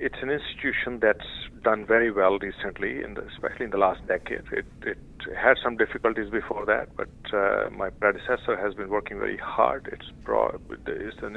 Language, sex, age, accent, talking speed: English, male, 50-69, Indian, 180 wpm